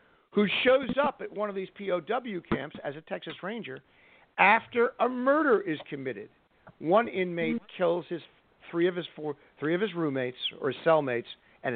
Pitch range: 135-195 Hz